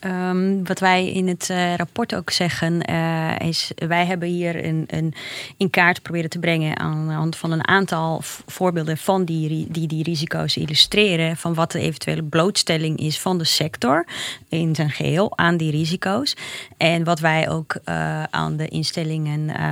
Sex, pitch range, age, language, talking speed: female, 150-180 Hz, 30-49, Dutch, 160 wpm